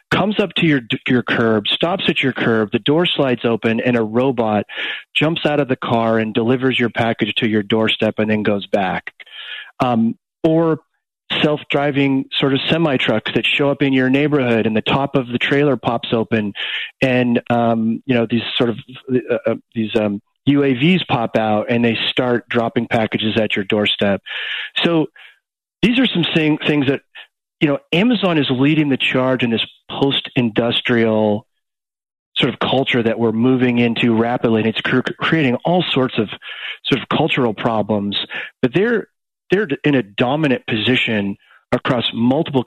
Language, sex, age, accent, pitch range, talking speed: English, male, 40-59, American, 115-140 Hz, 165 wpm